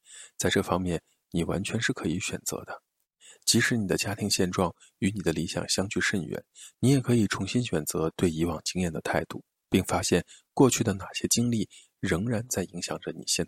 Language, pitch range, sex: Chinese, 90-115 Hz, male